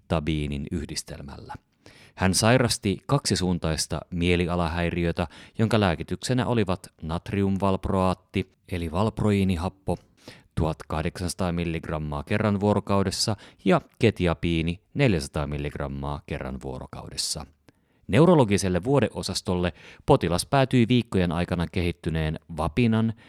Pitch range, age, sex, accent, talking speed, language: 85-105 Hz, 30-49, male, native, 75 wpm, Finnish